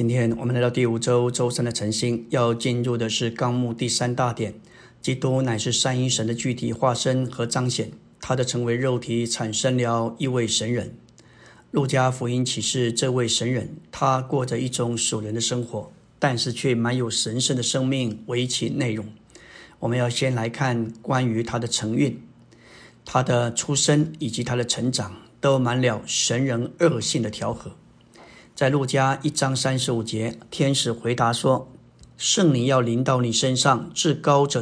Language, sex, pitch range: Chinese, male, 115-135 Hz